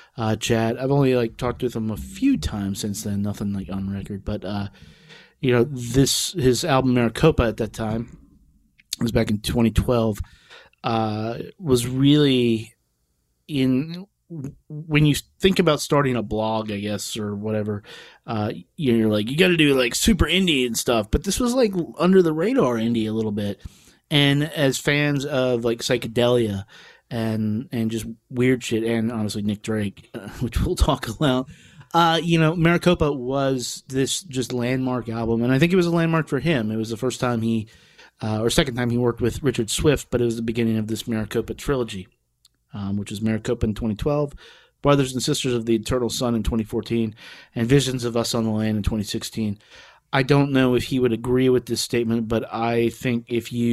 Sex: male